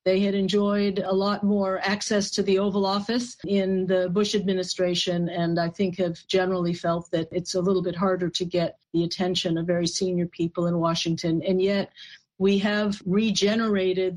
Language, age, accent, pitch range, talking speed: English, 50-69, American, 175-195 Hz, 180 wpm